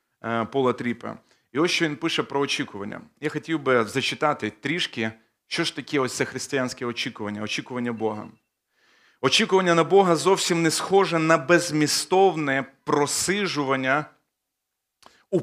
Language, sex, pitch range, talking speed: Ukrainian, male, 140-175 Hz, 130 wpm